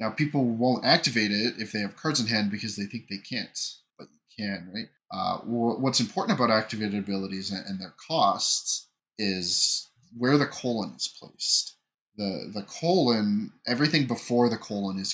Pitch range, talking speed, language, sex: 100-115 Hz, 170 wpm, English, male